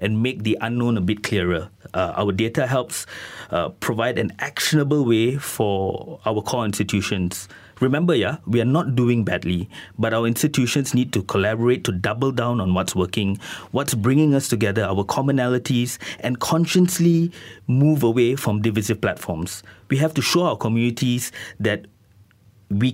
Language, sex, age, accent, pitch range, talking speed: English, male, 30-49, Malaysian, 100-125 Hz, 155 wpm